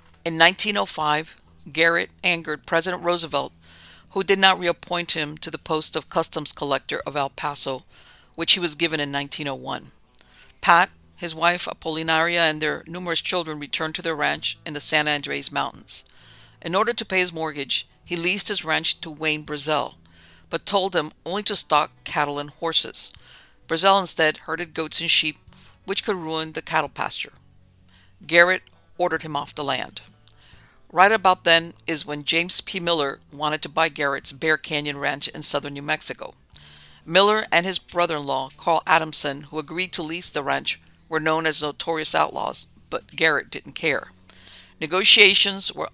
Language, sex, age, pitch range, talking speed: English, female, 50-69, 140-170 Hz, 165 wpm